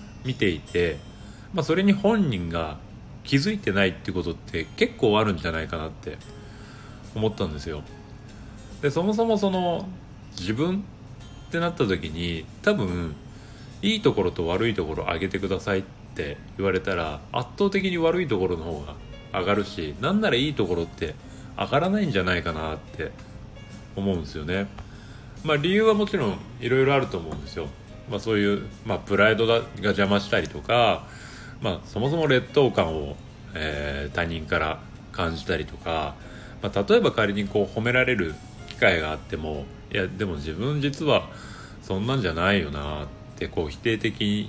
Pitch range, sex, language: 90-130 Hz, male, Japanese